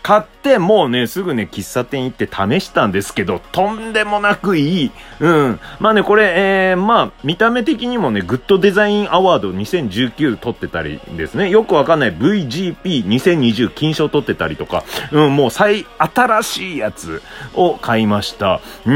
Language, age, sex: Japanese, 30-49, male